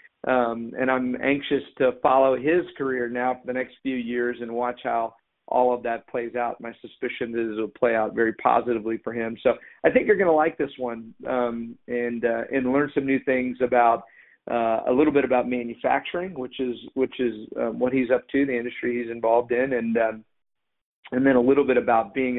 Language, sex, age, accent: English, male, 50-69, American